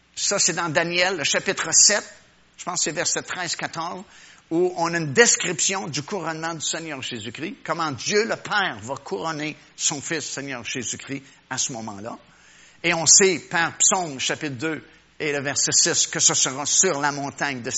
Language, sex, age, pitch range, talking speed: French, male, 50-69, 135-180 Hz, 180 wpm